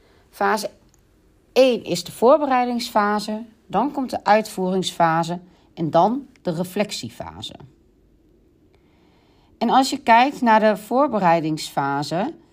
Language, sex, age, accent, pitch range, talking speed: Dutch, female, 40-59, Dutch, 180-255 Hz, 95 wpm